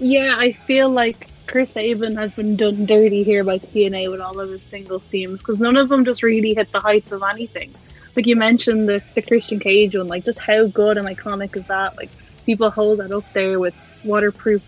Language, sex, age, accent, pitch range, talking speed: English, female, 10-29, Irish, 205-225 Hz, 220 wpm